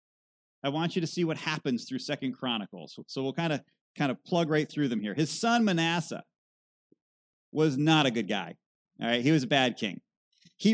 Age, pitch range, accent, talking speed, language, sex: 30-49, 125-165 Hz, American, 210 wpm, English, male